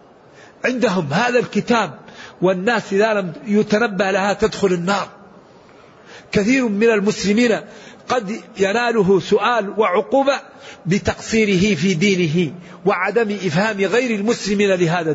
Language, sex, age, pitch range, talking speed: Arabic, male, 50-69, 185-220 Hz, 100 wpm